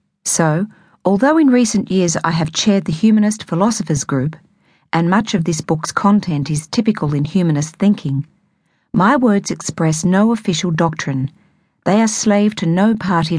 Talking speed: 155 wpm